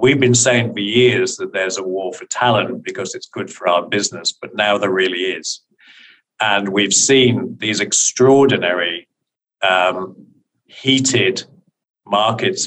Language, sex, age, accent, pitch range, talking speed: English, male, 50-69, British, 95-125 Hz, 140 wpm